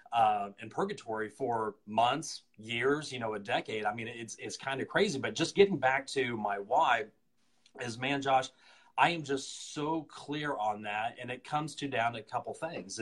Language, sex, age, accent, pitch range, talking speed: English, male, 30-49, American, 115-140 Hz, 200 wpm